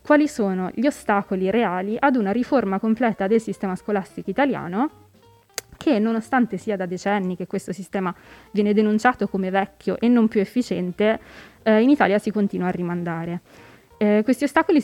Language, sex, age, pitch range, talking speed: Italian, female, 20-39, 195-230 Hz, 160 wpm